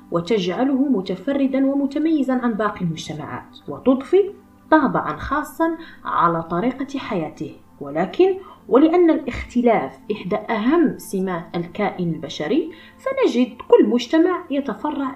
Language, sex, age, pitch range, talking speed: Arabic, female, 20-39, 185-310 Hz, 95 wpm